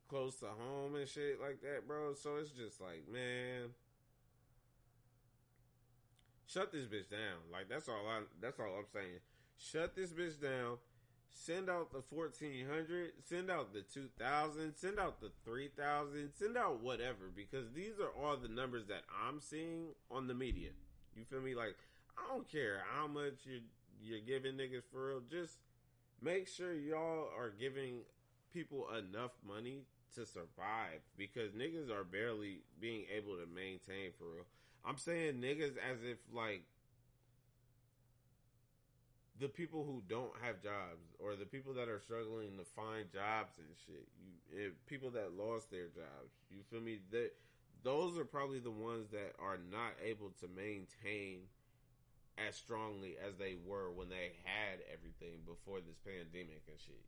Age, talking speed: 20-39, 160 wpm